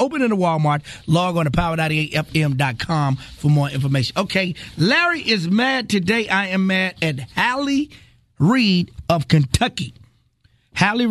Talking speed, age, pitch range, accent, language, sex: 135 wpm, 30-49, 140-205 Hz, American, English, male